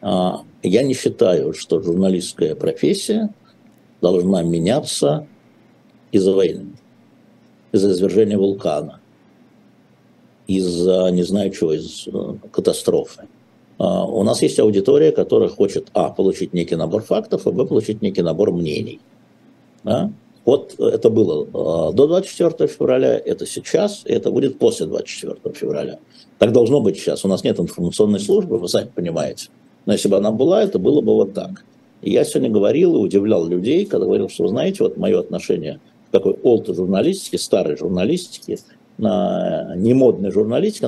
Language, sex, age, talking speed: Russian, male, 60-79, 140 wpm